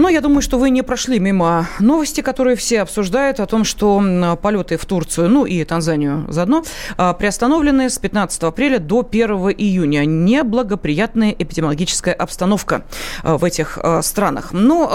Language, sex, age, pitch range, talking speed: Russian, female, 30-49, 180-250 Hz, 145 wpm